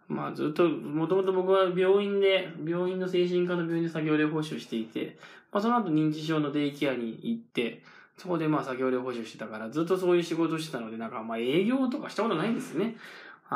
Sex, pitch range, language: male, 130-175 Hz, Japanese